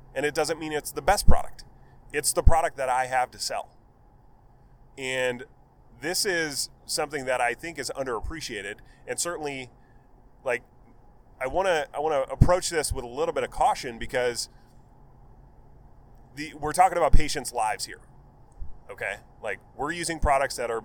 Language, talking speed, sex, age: English, 165 wpm, male, 30-49